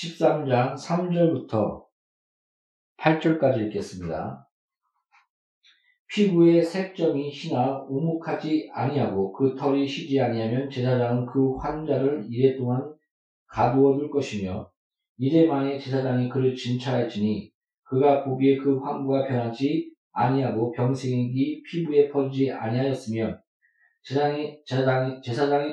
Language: Korean